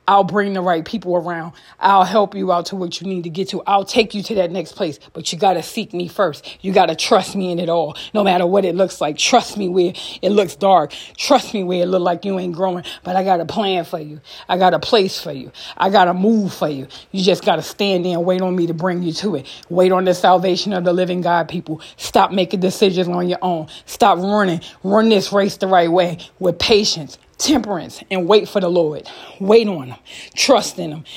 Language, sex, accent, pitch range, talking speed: English, female, American, 175-200 Hz, 250 wpm